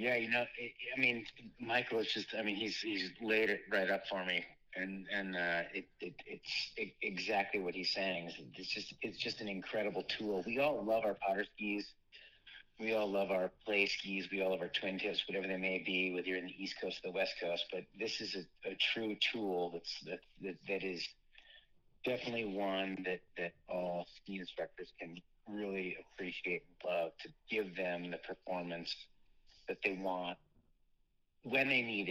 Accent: American